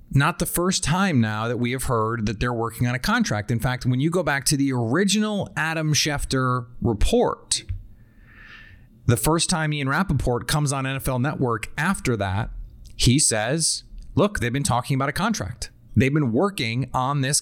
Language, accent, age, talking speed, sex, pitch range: English, American, 30-49, 180 wpm, male, 110-145 Hz